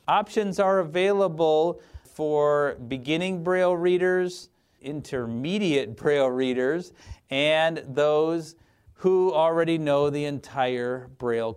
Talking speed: 95 wpm